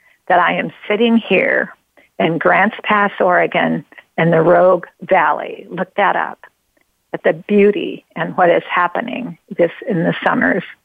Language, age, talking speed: English, 50-69, 150 wpm